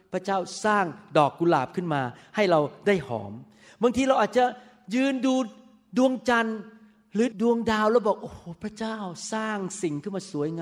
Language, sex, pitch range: Thai, male, 155-220 Hz